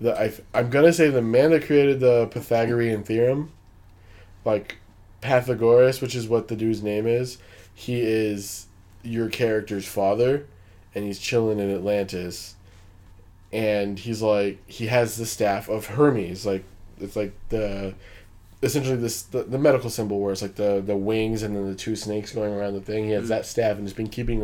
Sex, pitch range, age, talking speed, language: male, 95-115 Hz, 20-39, 180 wpm, English